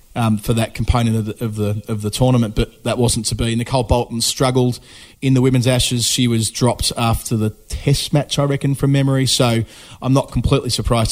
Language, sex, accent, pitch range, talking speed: English, male, Australian, 110-130 Hz, 210 wpm